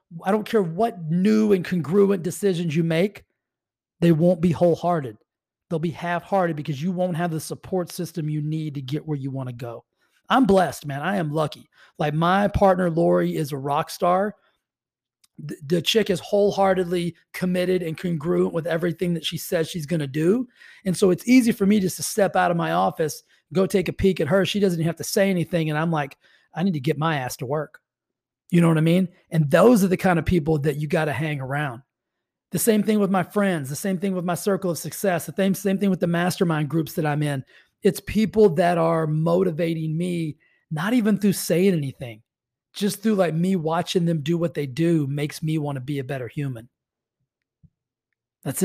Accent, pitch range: American, 150-185 Hz